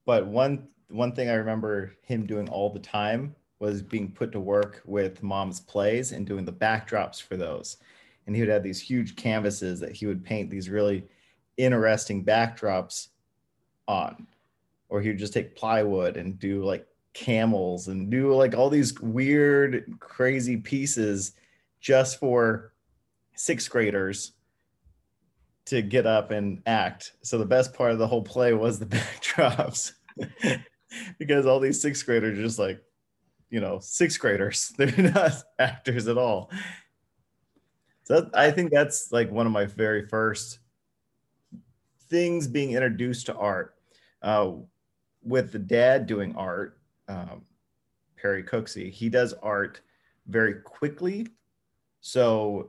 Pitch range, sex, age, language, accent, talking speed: 105-130 Hz, male, 30-49, English, American, 145 wpm